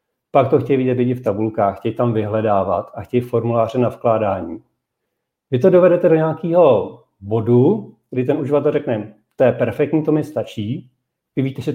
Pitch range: 120-155 Hz